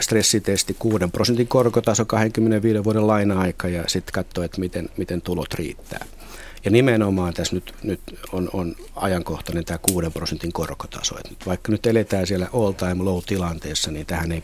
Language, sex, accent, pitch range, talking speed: Finnish, male, native, 85-110 Hz, 165 wpm